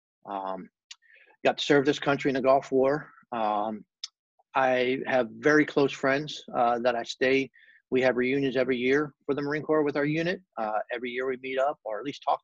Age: 30-49